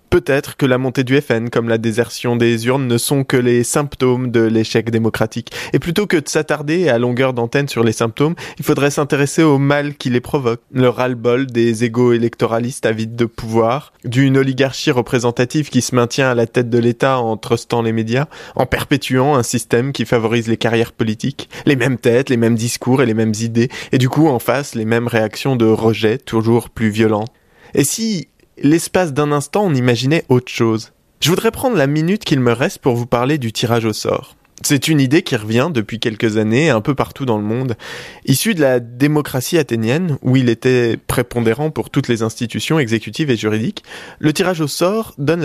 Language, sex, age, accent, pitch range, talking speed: French, male, 20-39, French, 115-145 Hz, 200 wpm